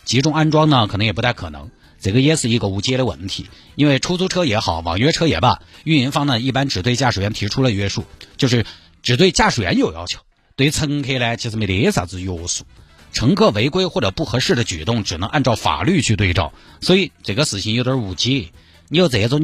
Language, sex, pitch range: Chinese, male, 100-145 Hz